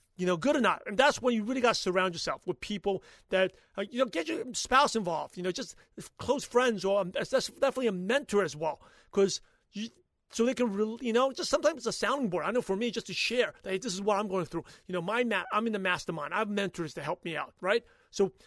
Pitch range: 205-275 Hz